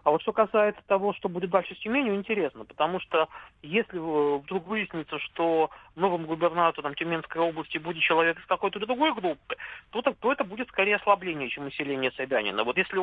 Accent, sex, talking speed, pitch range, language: native, male, 170 wpm, 155-205 Hz, Russian